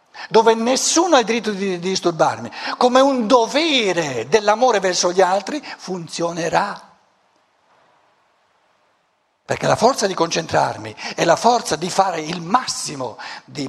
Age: 60-79